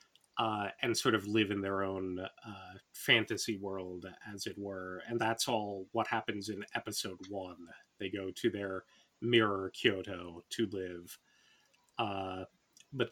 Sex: male